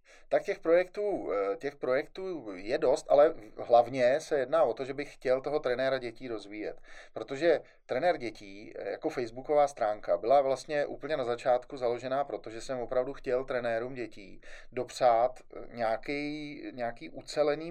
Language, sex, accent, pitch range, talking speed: Czech, male, native, 115-150 Hz, 140 wpm